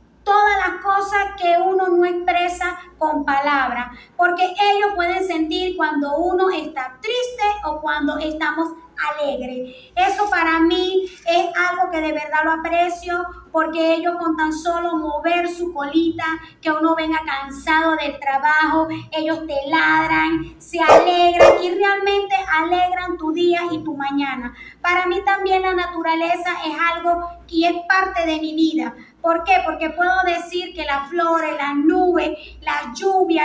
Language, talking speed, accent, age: English, 150 wpm, American, 30-49